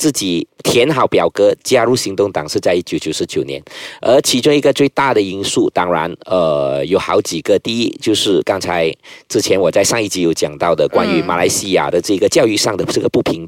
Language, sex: Chinese, male